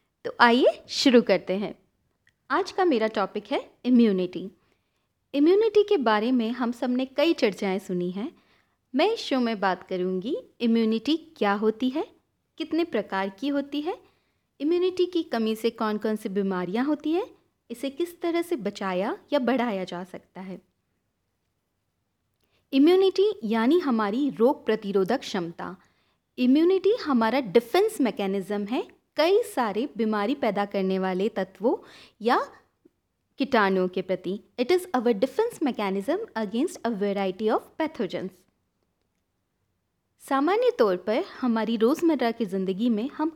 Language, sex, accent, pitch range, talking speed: Hindi, female, native, 195-300 Hz, 135 wpm